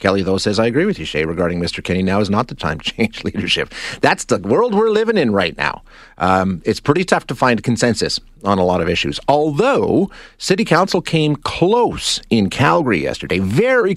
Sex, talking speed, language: male, 205 wpm, English